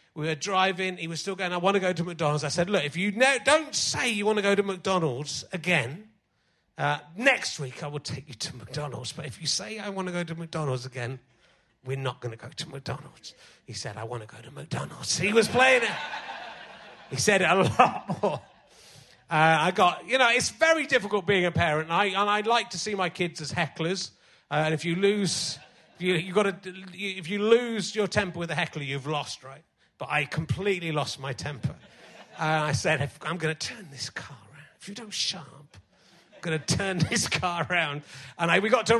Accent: British